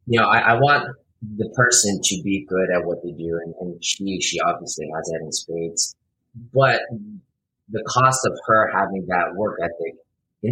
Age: 30-49